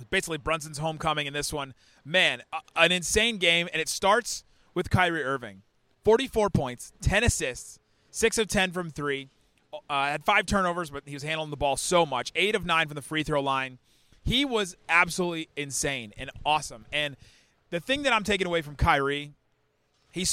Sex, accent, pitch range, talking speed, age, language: male, American, 140-180 Hz, 180 wpm, 30-49, English